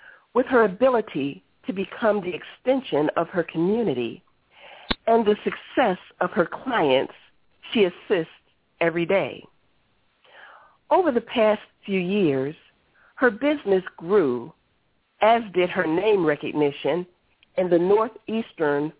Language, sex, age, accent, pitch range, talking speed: English, female, 40-59, American, 165-240 Hz, 115 wpm